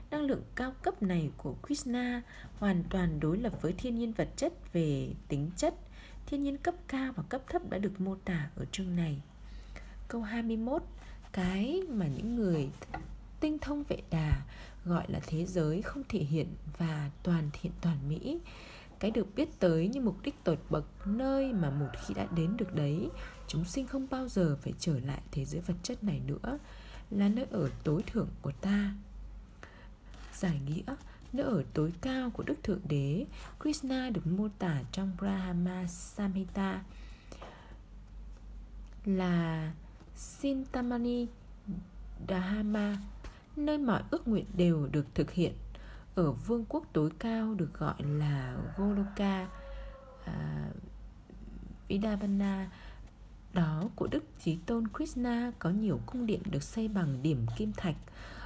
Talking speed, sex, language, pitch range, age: 150 wpm, female, Vietnamese, 160-235 Hz, 20-39